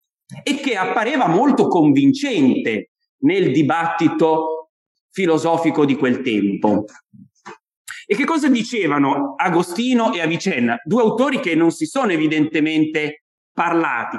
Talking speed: 110 wpm